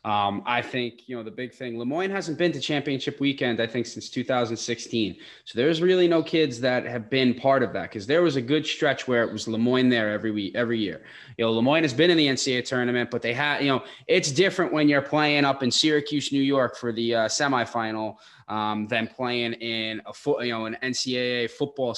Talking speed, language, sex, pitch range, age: 225 wpm, English, male, 115-130 Hz, 20-39